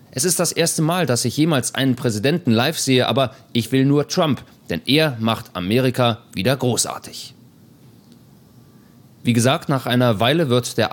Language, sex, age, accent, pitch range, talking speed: German, male, 40-59, German, 115-140 Hz, 165 wpm